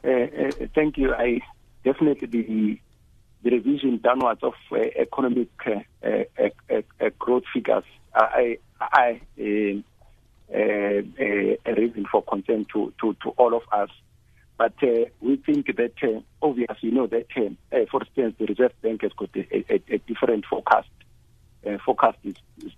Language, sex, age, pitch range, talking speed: English, male, 50-69, 110-135 Hz, 100 wpm